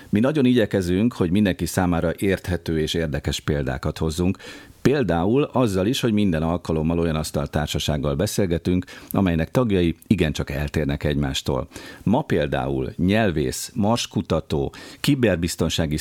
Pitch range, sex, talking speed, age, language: 75-100 Hz, male, 115 wpm, 50-69, Hungarian